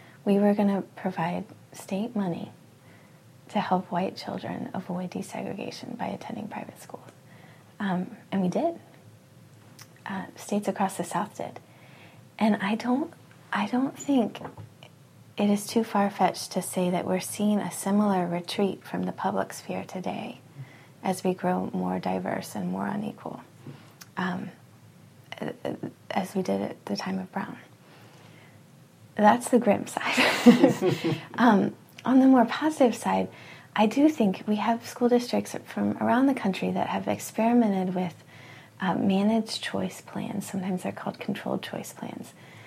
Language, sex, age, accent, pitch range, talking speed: English, female, 20-39, American, 165-225 Hz, 145 wpm